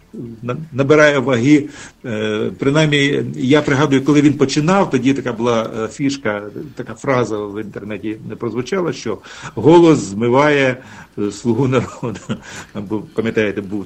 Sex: male